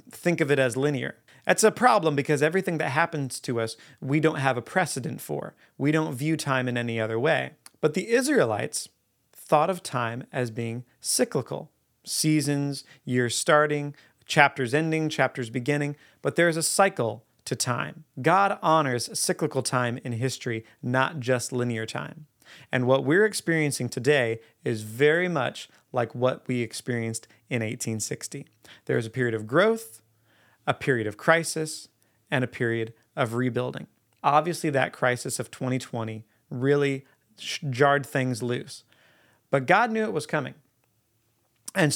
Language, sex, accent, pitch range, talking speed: English, male, American, 120-155 Hz, 150 wpm